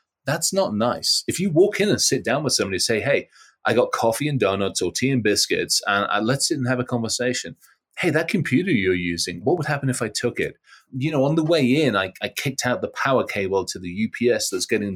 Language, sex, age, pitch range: English, male, 30-49, 95-130 Hz